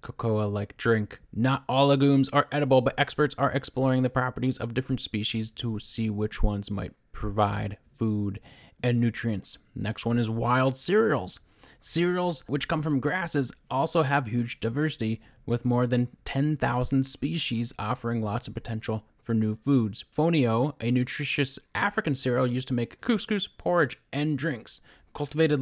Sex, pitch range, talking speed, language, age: male, 115-145 Hz, 150 wpm, English, 20-39